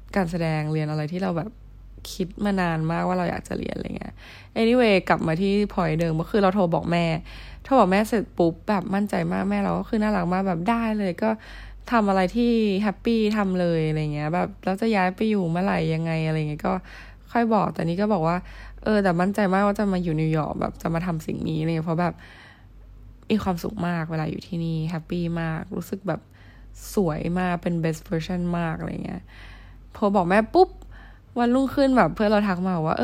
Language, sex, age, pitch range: Thai, female, 10-29, 165-210 Hz